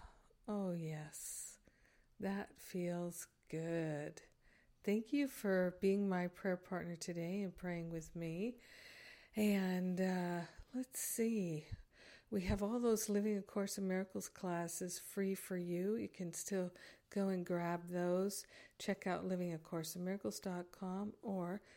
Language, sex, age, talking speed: English, female, 50-69, 125 wpm